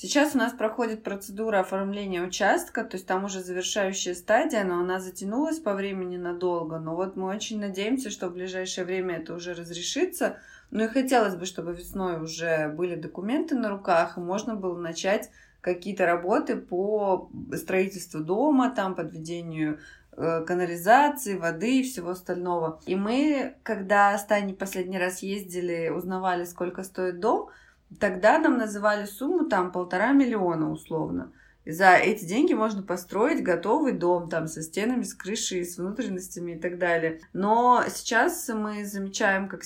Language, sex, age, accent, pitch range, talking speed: Russian, female, 20-39, native, 175-215 Hz, 150 wpm